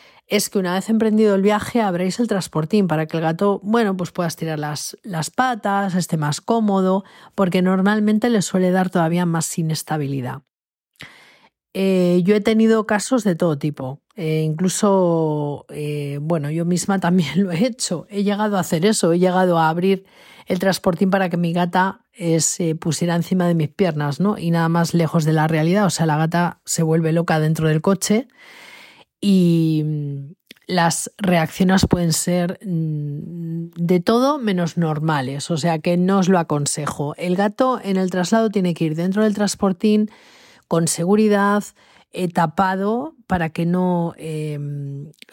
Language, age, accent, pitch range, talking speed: Spanish, 30-49, Spanish, 165-205 Hz, 165 wpm